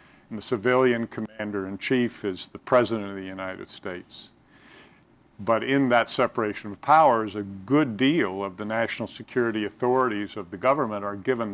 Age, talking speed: 50-69, 155 wpm